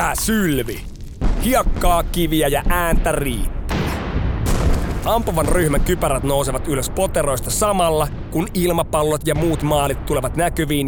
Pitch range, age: 135-170 Hz, 30-49